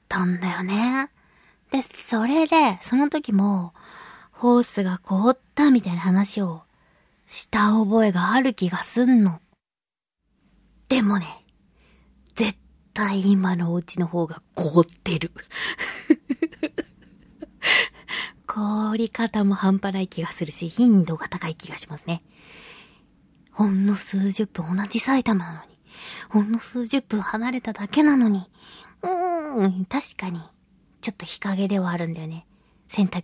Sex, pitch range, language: female, 185-265 Hz, Japanese